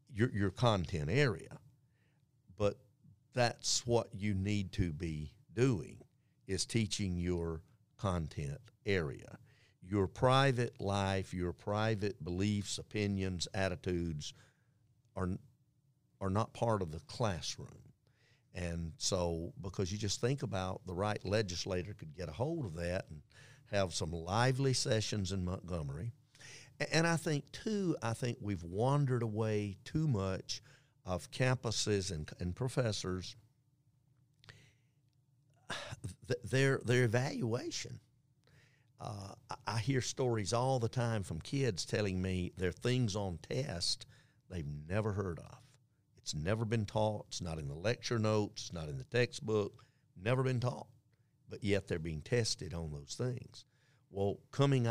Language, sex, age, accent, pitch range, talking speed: English, male, 50-69, American, 95-130 Hz, 135 wpm